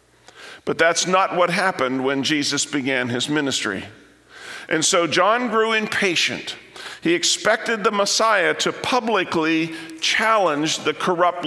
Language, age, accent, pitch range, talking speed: English, 50-69, American, 160-210 Hz, 125 wpm